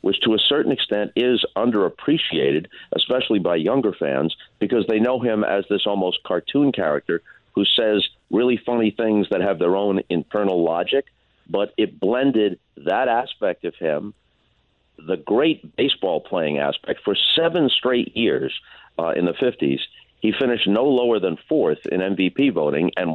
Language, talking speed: English, 160 wpm